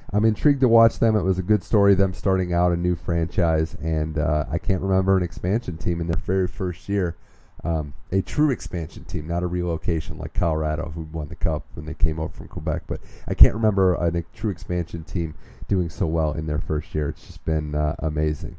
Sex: male